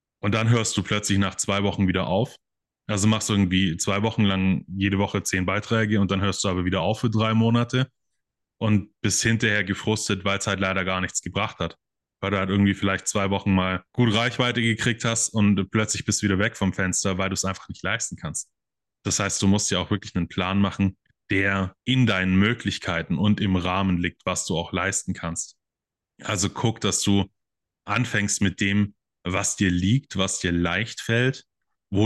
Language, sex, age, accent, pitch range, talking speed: German, male, 20-39, German, 95-110 Hz, 200 wpm